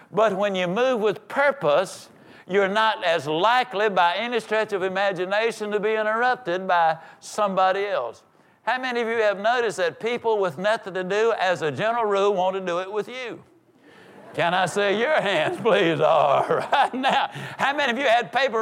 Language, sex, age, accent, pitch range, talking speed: English, male, 60-79, American, 185-230 Hz, 190 wpm